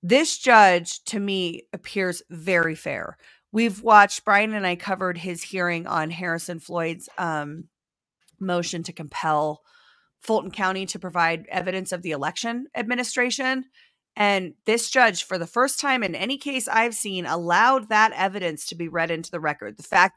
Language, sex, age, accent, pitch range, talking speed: English, female, 40-59, American, 175-215 Hz, 160 wpm